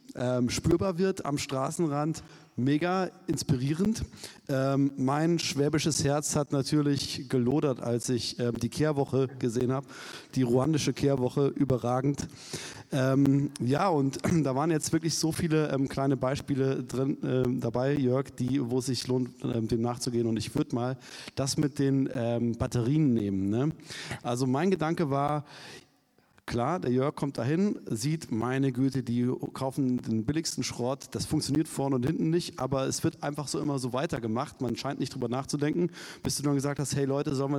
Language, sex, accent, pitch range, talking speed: German, male, German, 130-155 Hz, 155 wpm